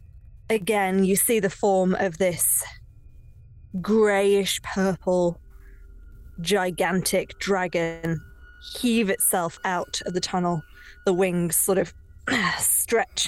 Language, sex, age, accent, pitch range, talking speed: English, female, 20-39, British, 170-225 Hz, 100 wpm